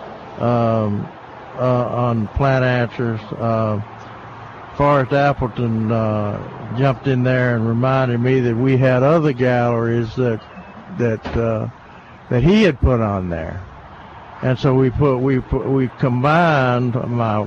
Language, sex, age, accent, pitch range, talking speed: English, male, 60-79, American, 115-135 Hz, 130 wpm